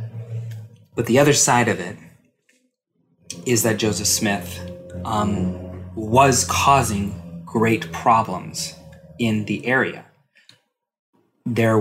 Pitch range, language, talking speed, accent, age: 100-120 Hz, English, 95 wpm, American, 30-49